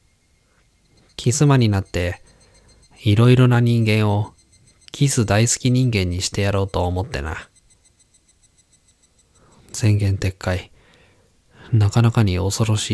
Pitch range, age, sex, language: 90-120 Hz, 20-39, male, Japanese